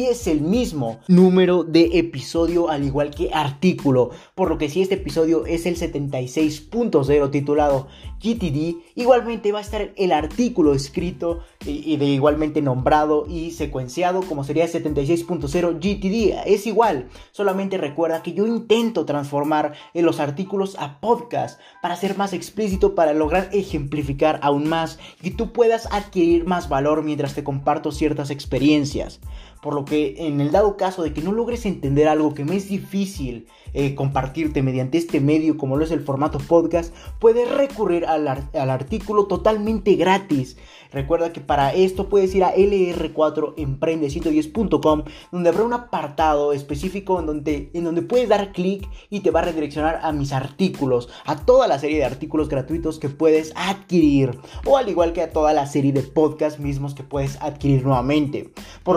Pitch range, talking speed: 145-190 Hz, 160 wpm